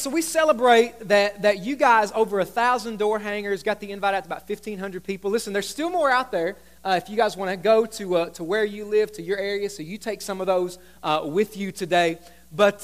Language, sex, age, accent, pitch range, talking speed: English, male, 30-49, American, 195-260 Hz, 240 wpm